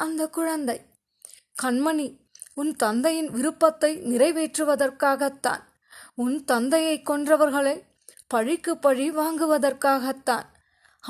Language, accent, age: Tamil, native, 20-39